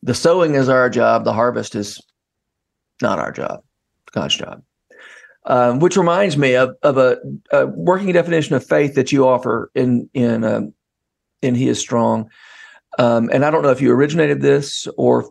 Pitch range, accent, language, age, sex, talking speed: 125-165 Hz, American, English, 40-59, male, 180 wpm